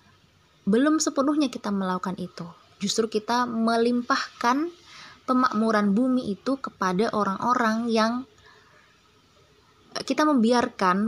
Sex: female